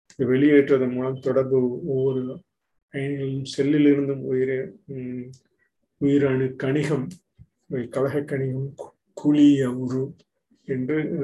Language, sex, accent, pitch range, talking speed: Tamil, male, native, 130-145 Hz, 70 wpm